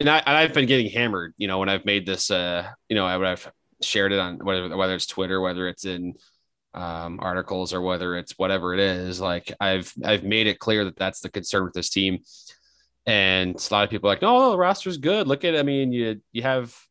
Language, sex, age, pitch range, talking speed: English, male, 20-39, 95-120 Hz, 240 wpm